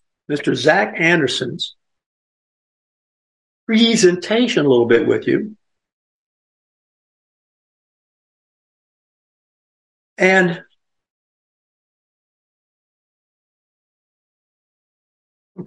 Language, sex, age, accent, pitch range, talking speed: English, male, 60-79, American, 130-190 Hz, 40 wpm